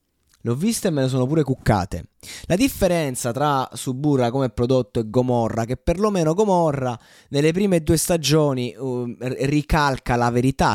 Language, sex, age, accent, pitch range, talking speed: Italian, male, 20-39, native, 105-145 Hz, 145 wpm